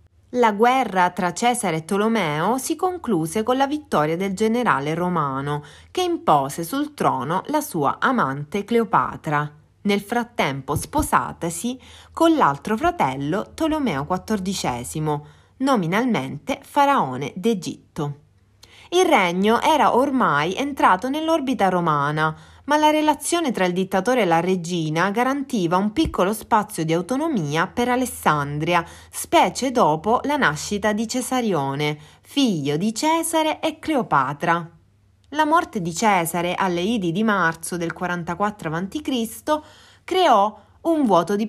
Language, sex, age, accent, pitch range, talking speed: Italian, female, 30-49, native, 155-250 Hz, 120 wpm